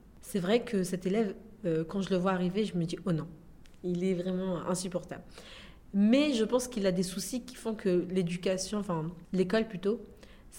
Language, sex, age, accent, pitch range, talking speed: French, female, 30-49, French, 180-230 Hz, 210 wpm